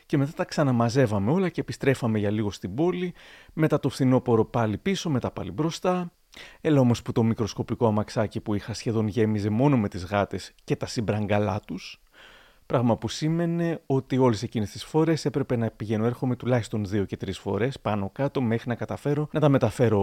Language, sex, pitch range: Greek, male, 110-145 Hz